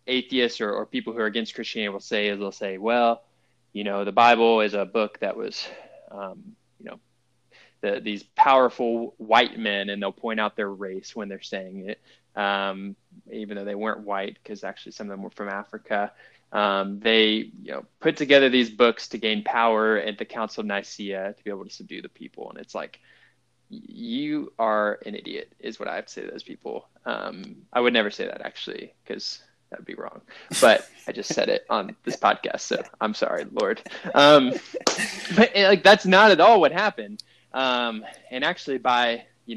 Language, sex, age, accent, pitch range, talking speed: English, male, 20-39, American, 105-130 Hz, 200 wpm